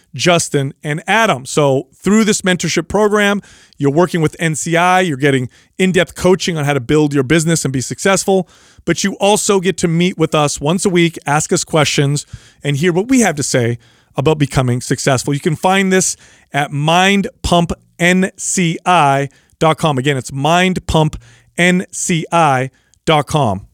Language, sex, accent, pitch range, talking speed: English, male, American, 145-190 Hz, 145 wpm